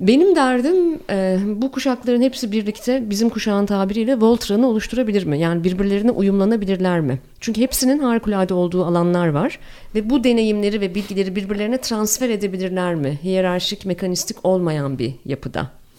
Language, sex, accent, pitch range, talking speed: Turkish, female, native, 155-225 Hz, 135 wpm